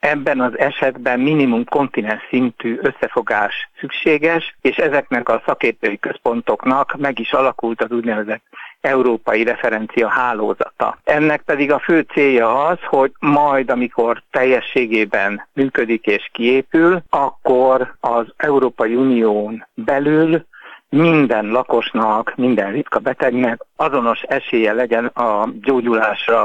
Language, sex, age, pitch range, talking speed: Hungarian, male, 60-79, 115-140 Hz, 110 wpm